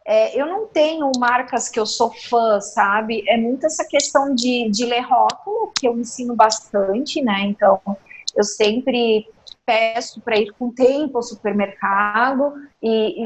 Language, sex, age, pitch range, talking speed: Portuguese, female, 30-49, 235-295 Hz, 160 wpm